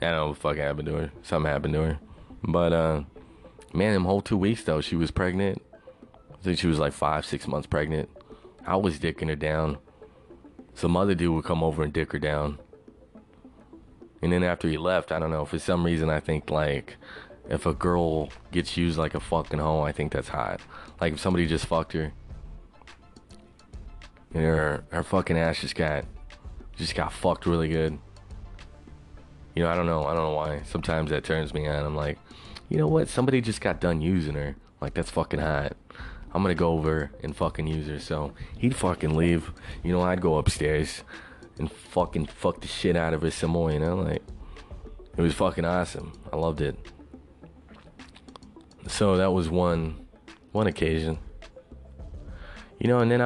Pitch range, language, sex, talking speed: 75-90 Hz, English, male, 190 wpm